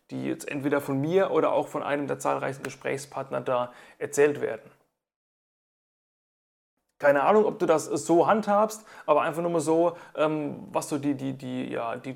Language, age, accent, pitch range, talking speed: German, 30-49, German, 145-200 Hz, 155 wpm